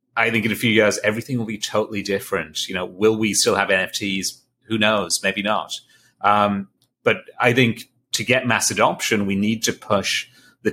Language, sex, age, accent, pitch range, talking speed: English, male, 30-49, British, 95-120 Hz, 195 wpm